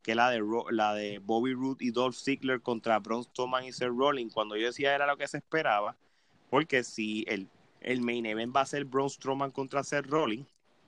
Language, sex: Spanish, male